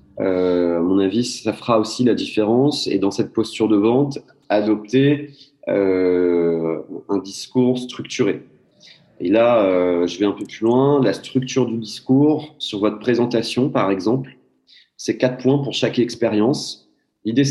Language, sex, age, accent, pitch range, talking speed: French, male, 30-49, French, 100-125 Hz, 155 wpm